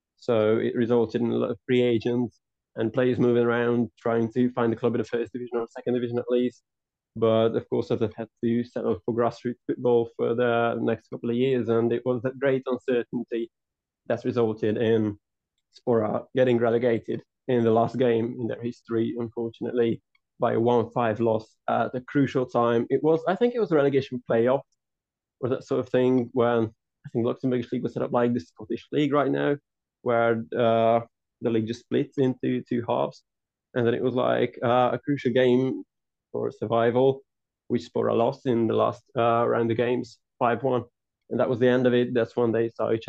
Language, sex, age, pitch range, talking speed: English, male, 20-39, 115-125 Hz, 200 wpm